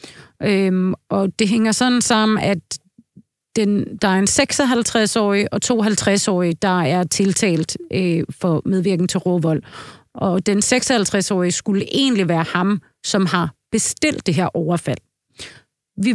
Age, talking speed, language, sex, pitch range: 30-49, 125 wpm, Danish, female, 180-220 Hz